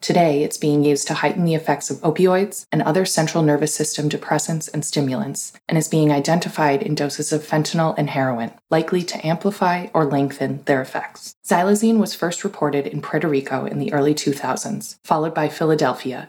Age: 20-39